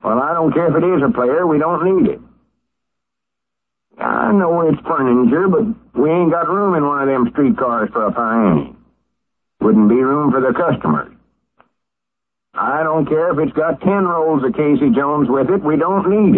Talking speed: 195 wpm